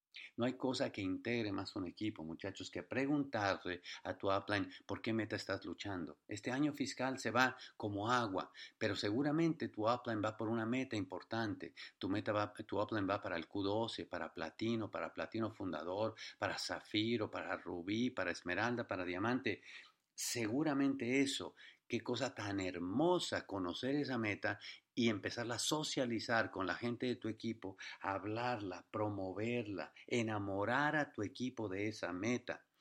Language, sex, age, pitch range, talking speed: English, male, 50-69, 100-120 Hz, 150 wpm